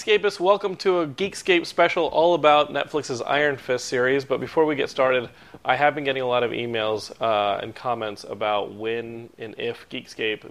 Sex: male